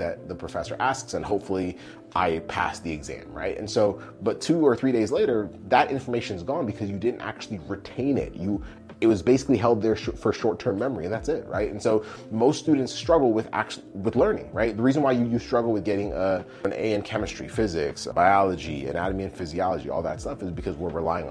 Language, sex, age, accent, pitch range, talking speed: English, male, 30-49, American, 90-115 Hz, 215 wpm